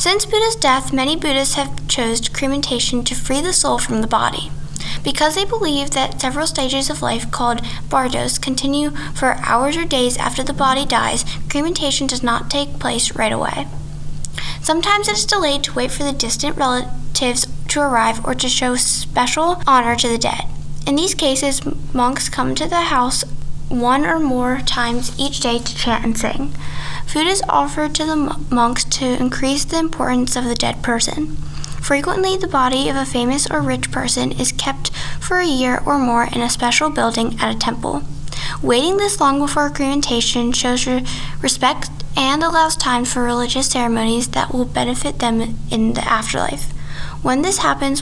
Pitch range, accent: 245-290 Hz, American